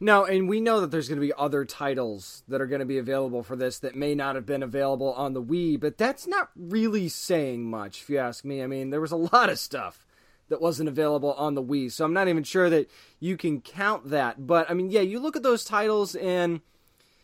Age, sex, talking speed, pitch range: 20-39, male, 250 wpm, 140-190 Hz